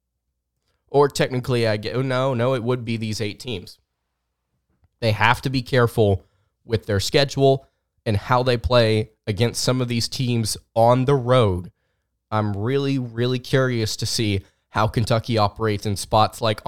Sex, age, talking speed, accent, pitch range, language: male, 20-39, 160 wpm, American, 100-125 Hz, English